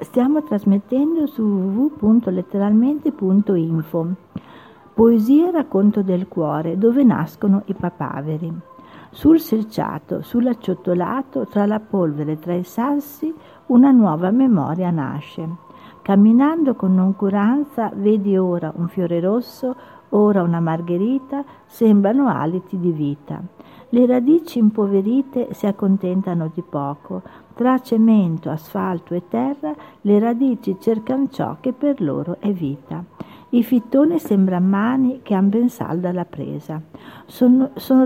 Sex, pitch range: female, 180-250 Hz